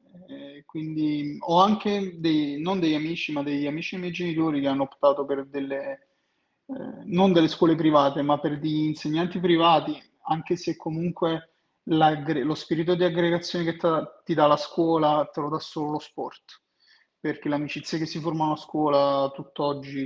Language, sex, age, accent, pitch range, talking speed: Italian, male, 30-49, native, 150-175 Hz, 170 wpm